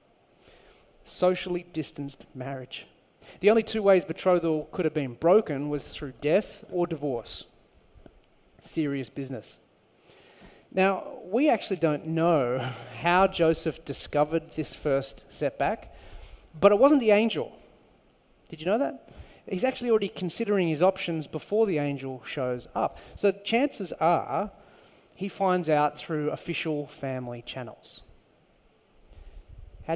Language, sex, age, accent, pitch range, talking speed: English, male, 30-49, Australian, 145-200 Hz, 120 wpm